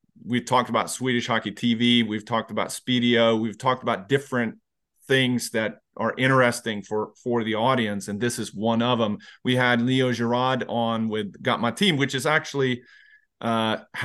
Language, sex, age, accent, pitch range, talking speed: English, male, 40-59, American, 115-140 Hz, 175 wpm